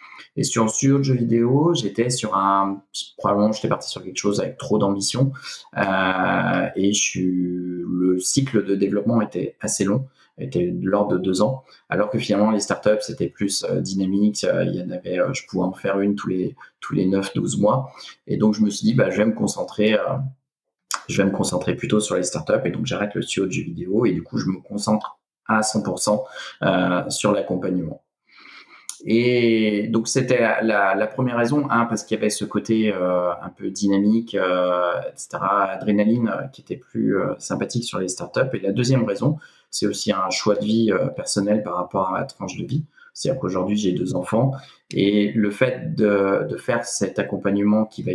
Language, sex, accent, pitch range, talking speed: French, male, French, 95-115 Hz, 205 wpm